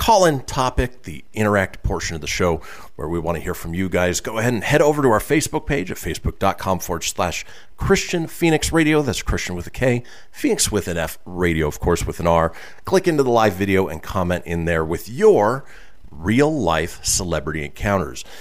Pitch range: 85-115 Hz